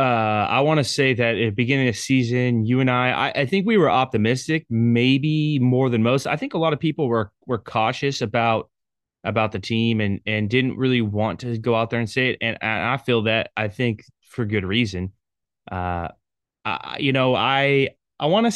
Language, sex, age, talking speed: English, male, 20-39, 220 wpm